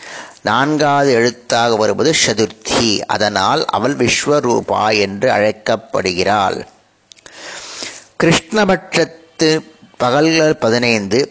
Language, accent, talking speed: Tamil, native, 65 wpm